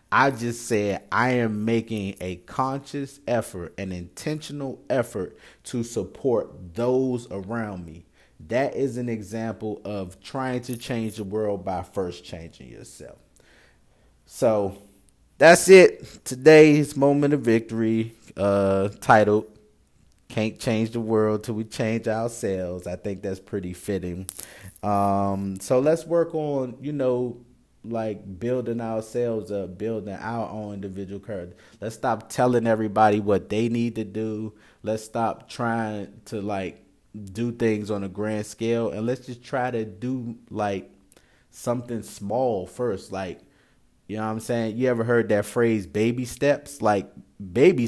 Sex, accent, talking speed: male, American, 145 wpm